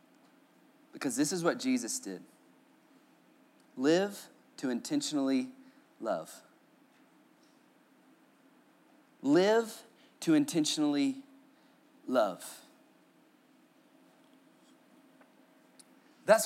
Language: English